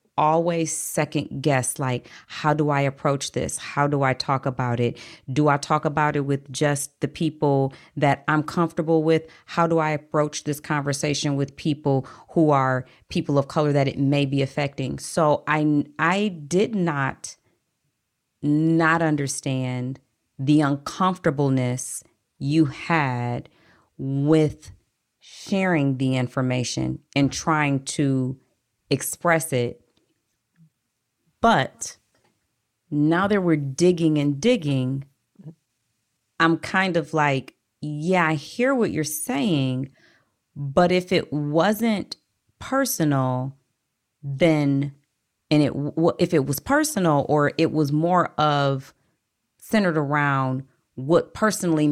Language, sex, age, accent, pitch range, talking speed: English, female, 30-49, American, 135-160 Hz, 120 wpm